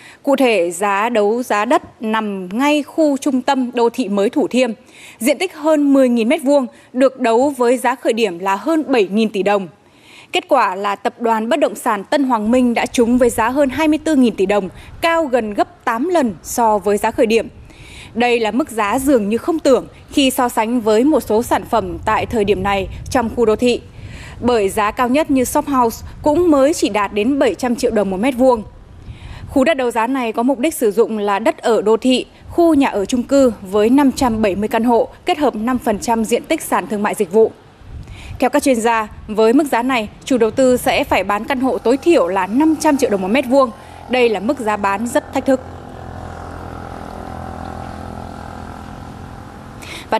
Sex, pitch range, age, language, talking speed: female, 215-275 Hz, 20-39, Vietnamese, 205 wpm